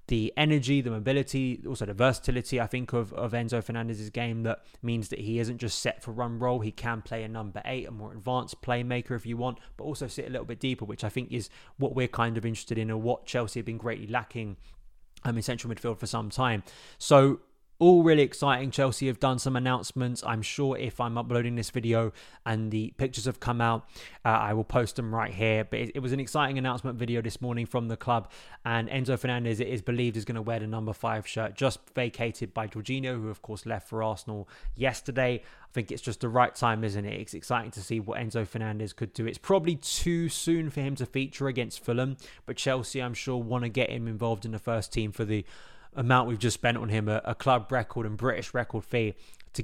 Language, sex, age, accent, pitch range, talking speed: English, male, 20-39, British, 110-125 Hz, 235 wpm